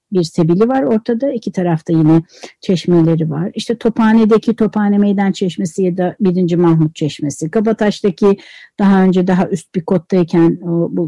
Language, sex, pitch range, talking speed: Turkish, female, 180-250 Hz, 150 wpm